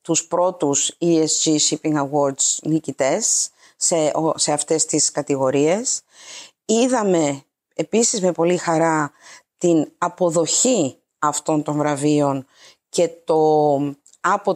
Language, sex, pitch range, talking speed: Greek, female, 155-200 Hz, 95 wpm